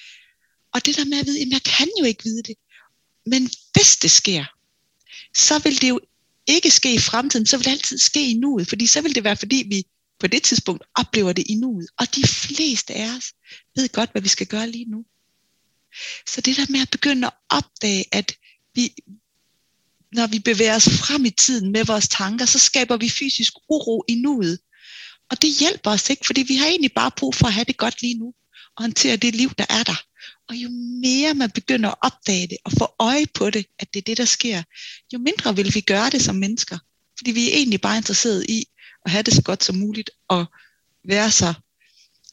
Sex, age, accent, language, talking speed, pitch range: female, 30-49, native, Danish, 215 wpm, 200-265 Hz